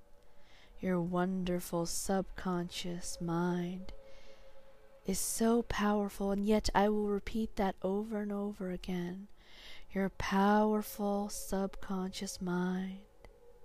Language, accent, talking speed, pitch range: English, American, 90 wpm, 180-215 Hz